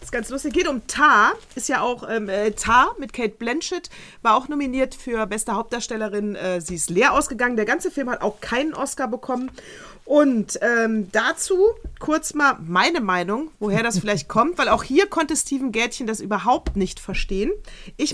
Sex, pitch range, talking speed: female, 215-290 Hz, 185 wpm